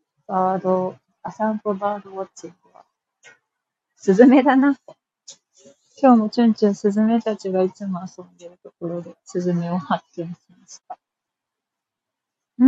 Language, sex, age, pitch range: Japanese, female, 40-59, 185-270 Hz